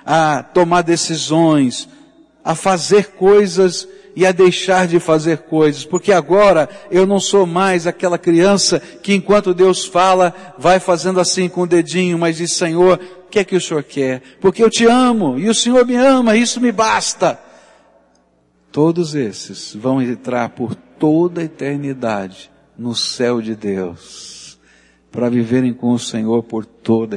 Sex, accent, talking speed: male, Brazilian, 155 wpm